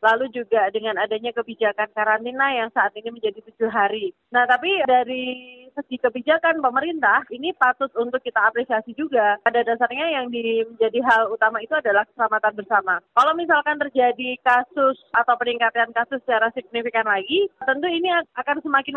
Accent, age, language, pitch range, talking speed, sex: native, 20-39, Indonesian, 230-280 Hz, 150 wpm, female